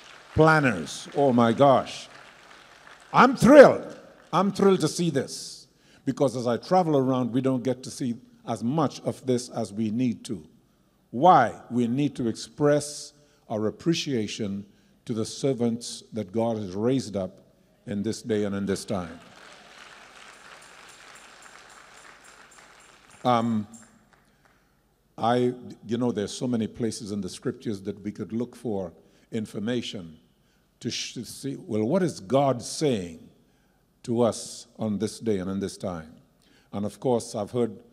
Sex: male